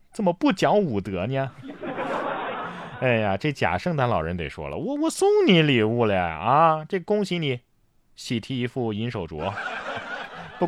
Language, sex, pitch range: Chinese, male, 100-150 Hz